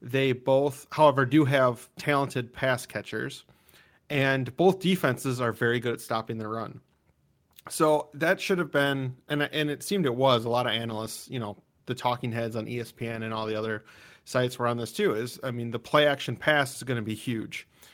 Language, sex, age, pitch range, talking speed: English, male, 30-49, 115-140 Hz, 200 wpm